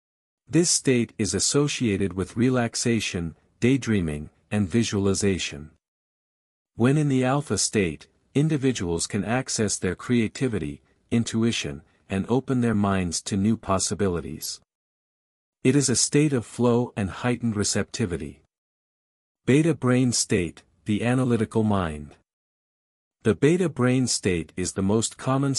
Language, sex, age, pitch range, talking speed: English, male, 50-69, 90-125 Hz, 115 wpm